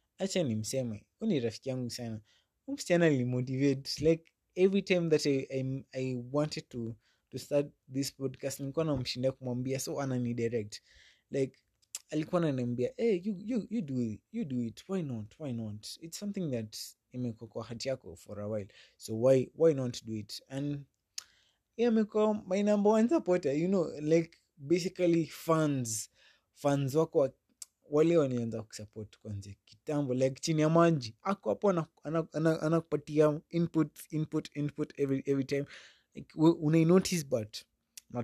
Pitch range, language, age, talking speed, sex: 115-155 Hz, English, 20-39, 120 wpm, male